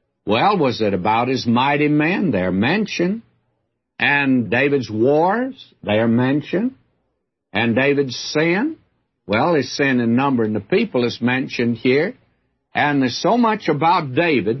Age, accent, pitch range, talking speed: 60-79, American, 115-155 Hz, 140 wpm